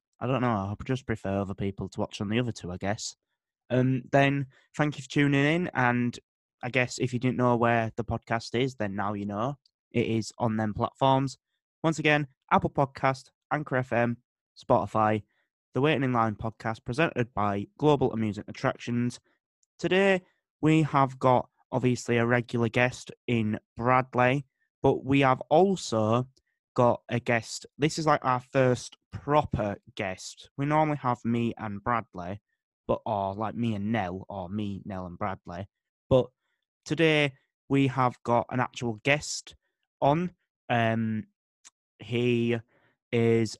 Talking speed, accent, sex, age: 155 wpm, British, male, 20-39